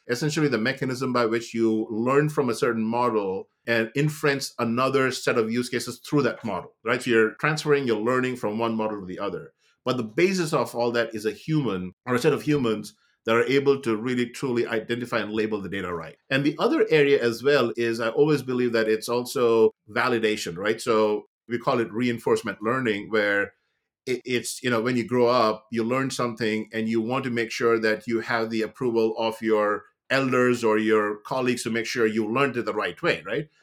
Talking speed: 210 wpm